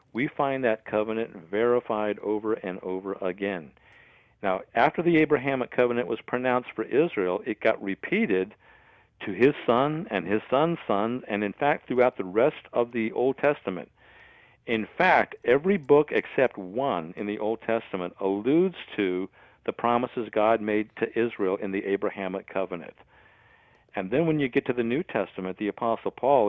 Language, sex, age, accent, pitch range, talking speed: English, male, 60-79, American, 100-120 Hz, 165 wpm